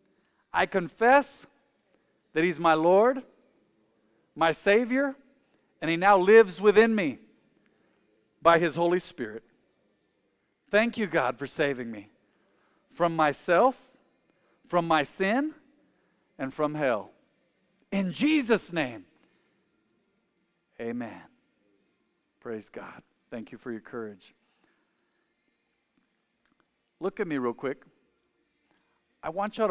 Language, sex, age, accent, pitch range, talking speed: English, male, 50-69, American, 130-185 Hz, 105 wpm